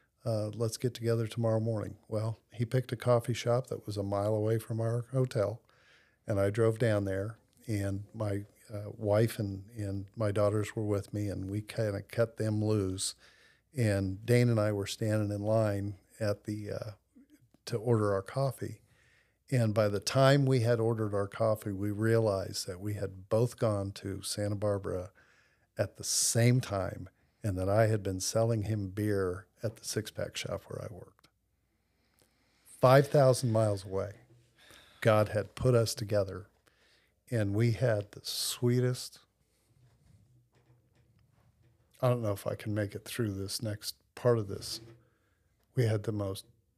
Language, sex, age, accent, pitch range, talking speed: English, male, 50-69, American, 105-120 Hz, 165 wpm